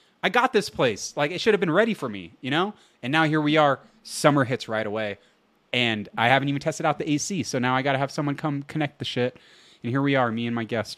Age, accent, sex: 30-49, American, male